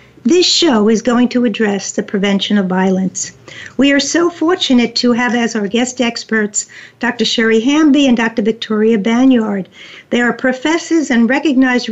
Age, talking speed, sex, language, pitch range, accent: 50-69, 160 wpm, female, English, 215-260 Hz, American